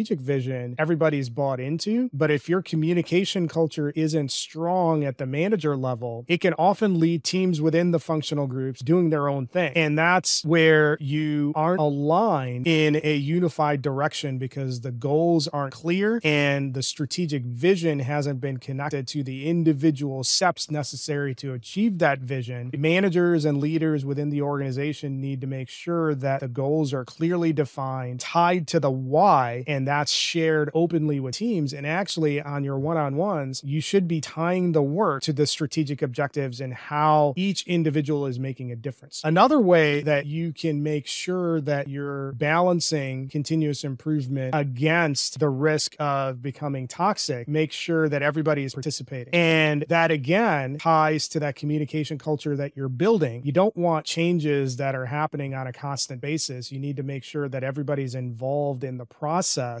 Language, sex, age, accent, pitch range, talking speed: English, male, 30-49, American, 140-165 Hz, 165 wpm